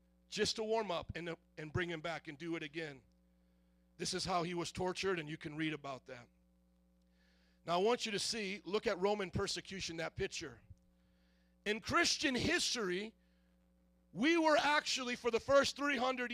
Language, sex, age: English, male, 50-69